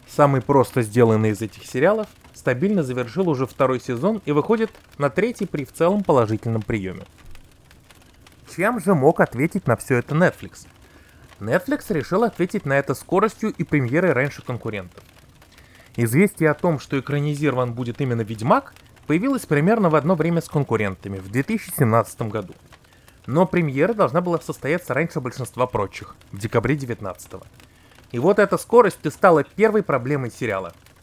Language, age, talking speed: Russian, 20-39, 145 wpm